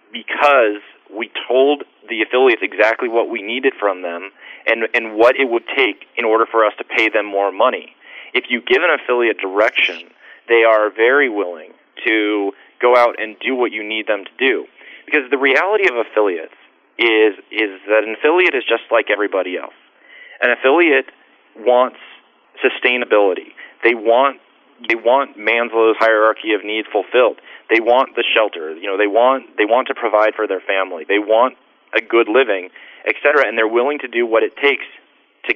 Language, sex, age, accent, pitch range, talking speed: English, male, 30-49, American, 110-150 Hz, 175 wpm